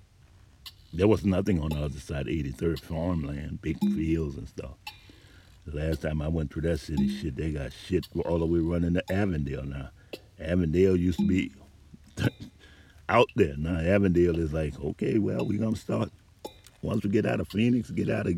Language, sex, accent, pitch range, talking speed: English, male, American, 75-95 Hz, 185 wpm